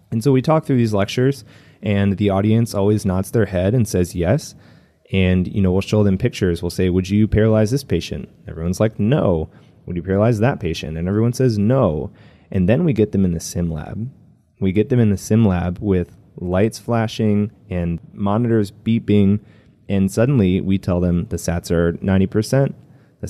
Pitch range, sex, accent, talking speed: 90-115 Hz, male, American, 195 wpm